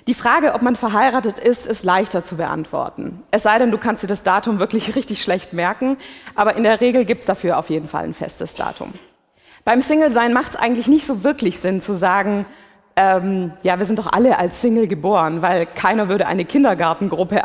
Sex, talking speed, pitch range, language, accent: female, 205 wpm, 190-250 Hz, German, German